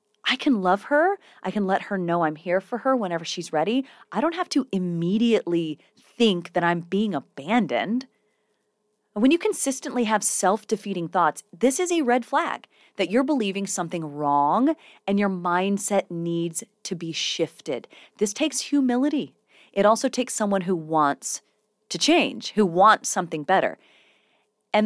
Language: English